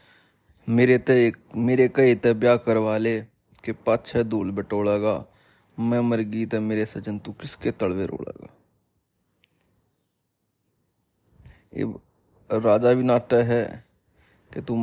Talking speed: 100 wpm